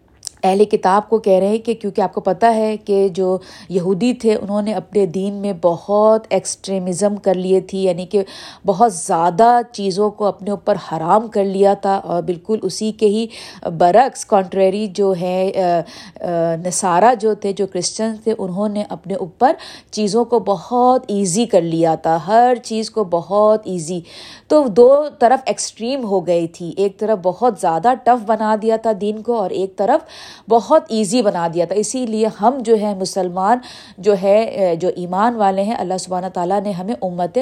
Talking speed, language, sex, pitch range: 180 wpm, Urdu, female, 190-235 Hz